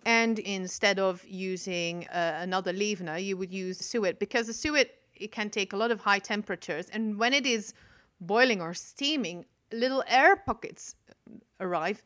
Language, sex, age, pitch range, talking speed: English, female, 30-49, 190-230 Hz, 165 wpm